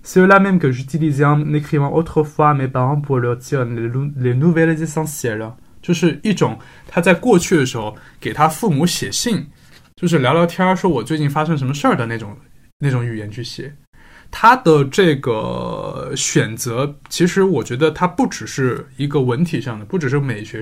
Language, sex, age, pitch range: Chinese, male, 20-39, 125-165 Hz